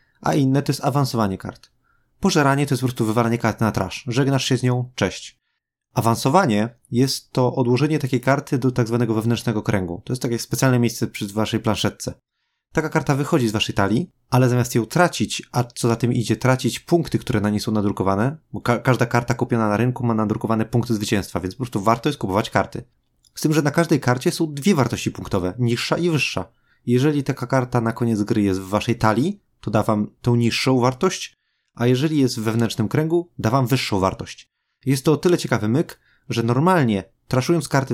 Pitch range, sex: 115-140 Hz, male